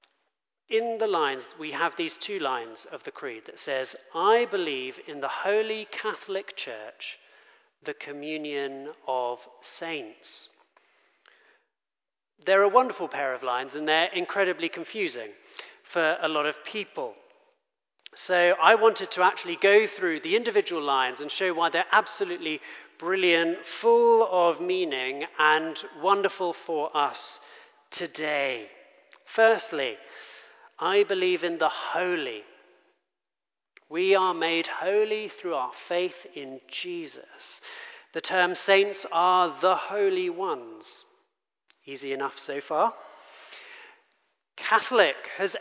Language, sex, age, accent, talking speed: English, male, 40-59, British, 120 wpm